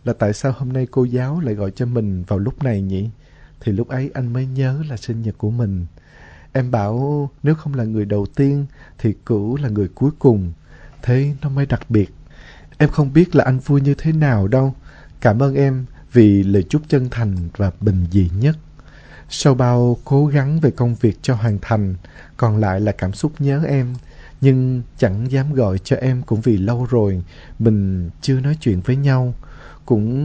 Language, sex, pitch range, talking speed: Vietnamese, male, 105-140 Hz, 200 wpm